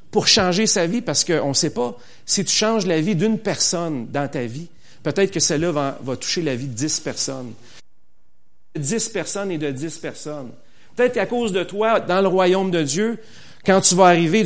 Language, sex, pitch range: French, male, 125-195 Hz